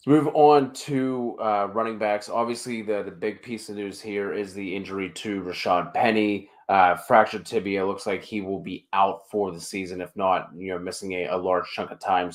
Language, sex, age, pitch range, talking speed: English, male, 20-39, 95-110 Hz, 210 wpm